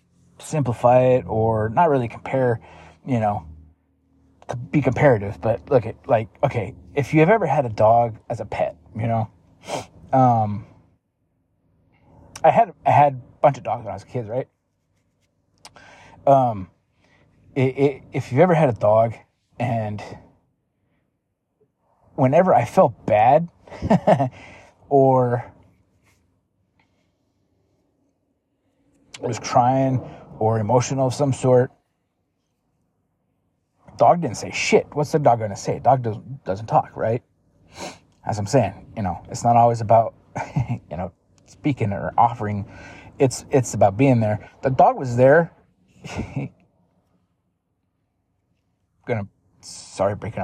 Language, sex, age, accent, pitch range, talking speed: English, male, 20-39, American, 95-130 Hz, 120 wpm